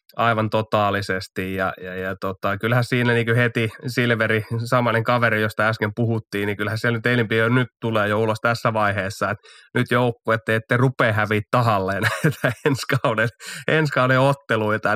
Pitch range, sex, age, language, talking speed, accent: 105-115 Hz, male, 20-39, Finnish, 150 wpm, native